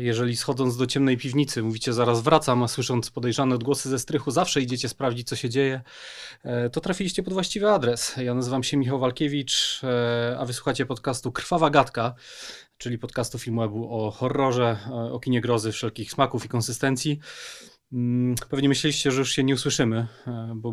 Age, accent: 30-49, native